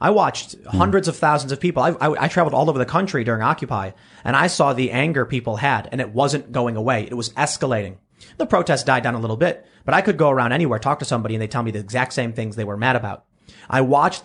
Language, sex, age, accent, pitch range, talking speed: English, male, 30-49, American, 120-150 Hz, 260 wpm